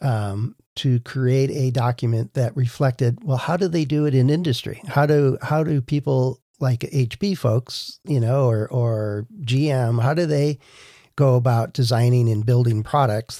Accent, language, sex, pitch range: American, English, male, 120-140 Hz